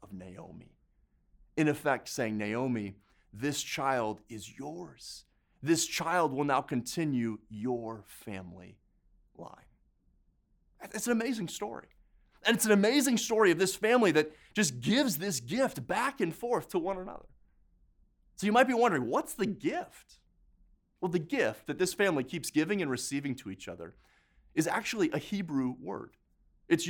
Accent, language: American, English